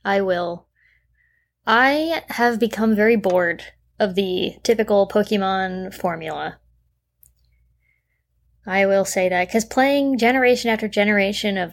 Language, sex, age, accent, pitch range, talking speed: English, female, 20-39, American, 175-235 Hz, 115 wpm